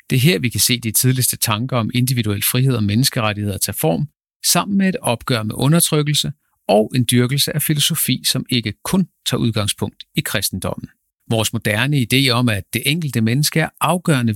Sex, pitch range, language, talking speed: male, 110-145 Hz, Danish, 185 wpm